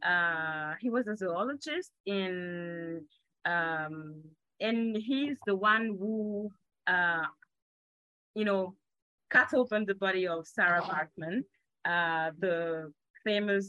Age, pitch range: 20-39, 165-215 Hz